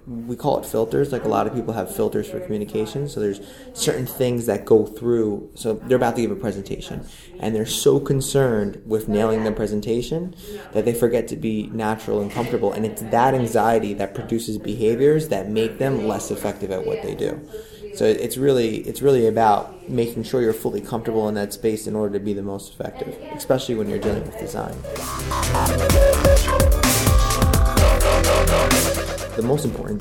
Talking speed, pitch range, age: 180 wpm, 110-140 Hz, 20-39